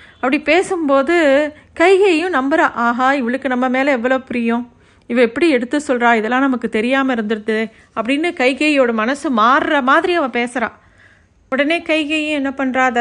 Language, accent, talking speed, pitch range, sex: Tamil, native, 135 wpm, 235-285 Hz, female